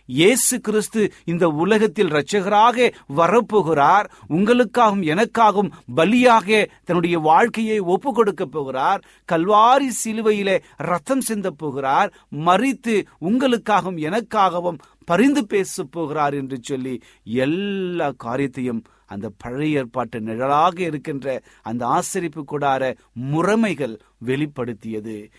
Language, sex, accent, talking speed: Tamil, male, native, 85 wpm